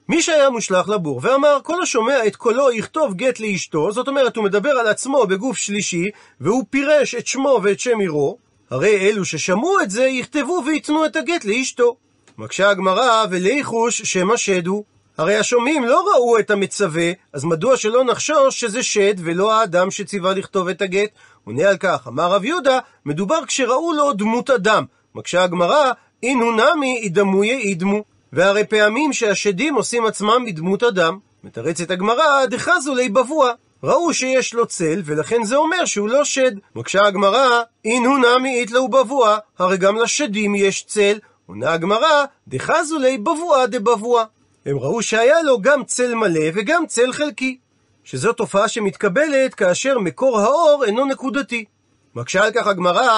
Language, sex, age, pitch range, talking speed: Hebrew, male, 40-59, 200-265 Hz, 155 wpm